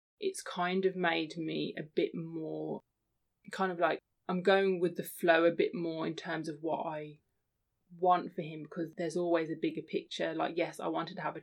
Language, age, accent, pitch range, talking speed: English, 20-39, British, 155-175 Hz, 210 wpm